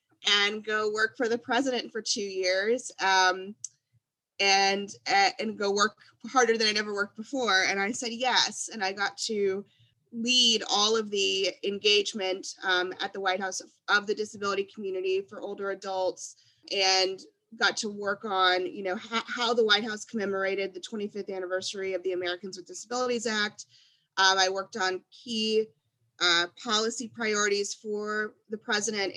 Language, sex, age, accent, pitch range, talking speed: English, female, 20-39, American, 185-225 Hz, 165 wpm